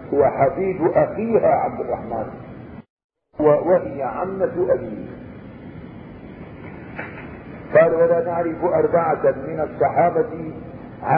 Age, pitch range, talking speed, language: 50-69, 160-200 Hz, 70 wpm, Arabic